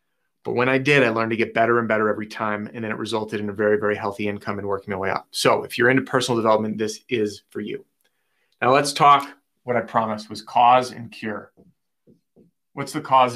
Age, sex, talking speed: 30-49, male, 230 wpm